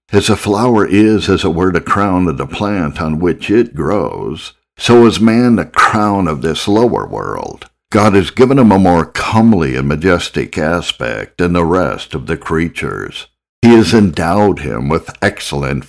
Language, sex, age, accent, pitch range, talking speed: English, male, 60-79, American, 80-100 Hz, 180 wpm